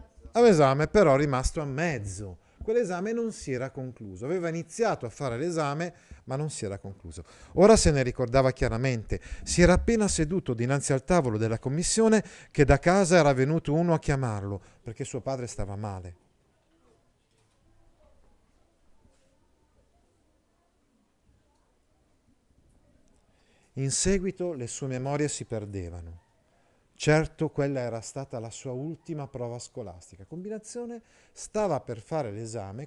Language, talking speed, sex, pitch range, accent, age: Italian, 125 wpm, male, 110-165 Hz, native, 40-59